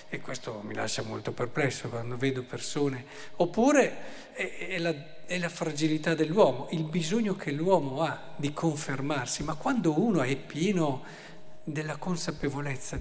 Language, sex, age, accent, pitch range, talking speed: Italian, male, 50-69, native, 135-170 Hz, 130 wpm